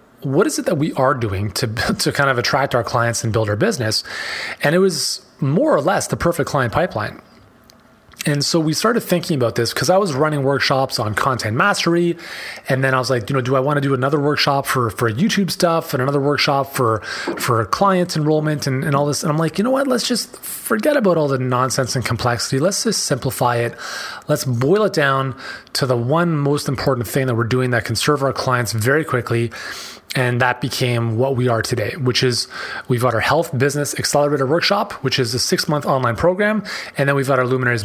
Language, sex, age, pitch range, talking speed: English, male, 30-49, 125-160 Hz, 220 wpm